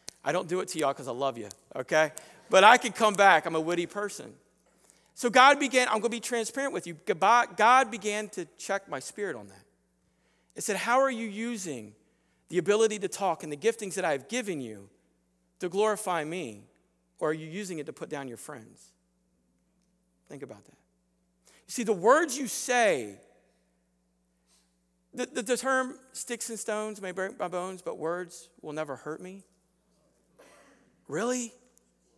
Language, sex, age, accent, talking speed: English, male, 40-59, American, 175 wpm